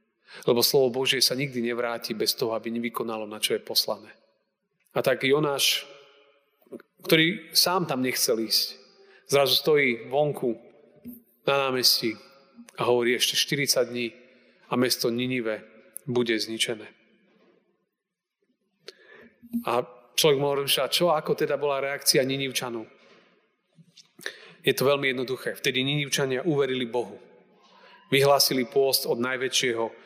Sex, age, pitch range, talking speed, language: male, 40-59, 125-145 Hz, 120 wpm, Slovak